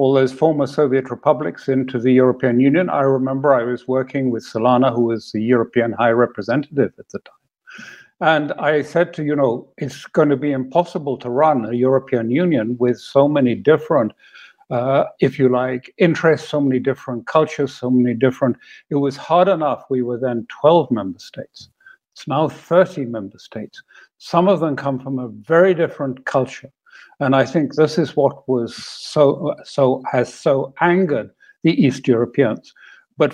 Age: 60-79